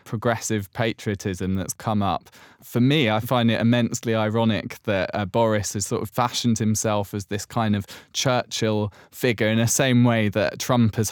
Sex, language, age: male, English, 20-39